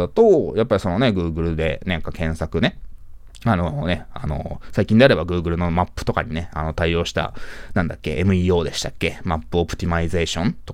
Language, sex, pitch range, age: Japanese, male, 85-140 Hz, 20-39